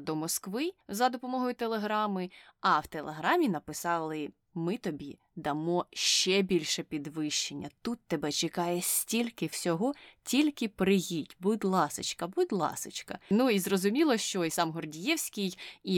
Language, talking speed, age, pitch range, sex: Ukrainian, 130 wpm, 20-39, 165-220 Hz, female